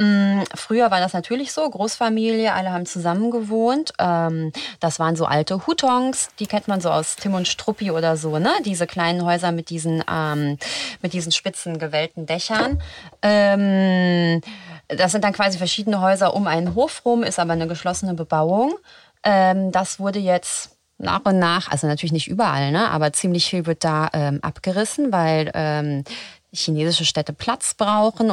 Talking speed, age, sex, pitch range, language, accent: 150 wpm, 30-49, female, 165-210 Hz, German, German